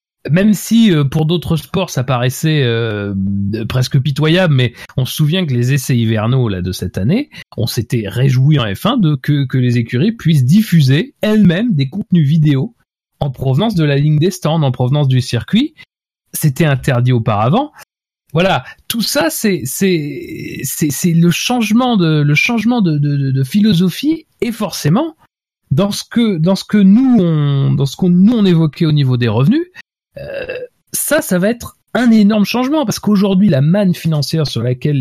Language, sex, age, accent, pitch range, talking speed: French, male, 30-49, French, 125-195 Hz, 180 wpm